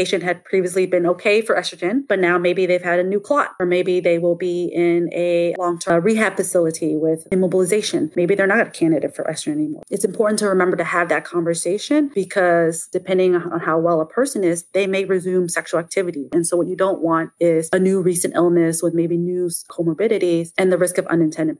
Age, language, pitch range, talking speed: 30-49, English, 170-200 Hz, 215 wpm